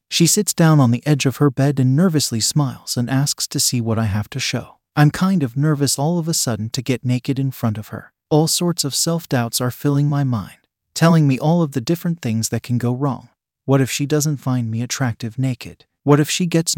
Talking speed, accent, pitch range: 240 wpm, American, 120-150 Hz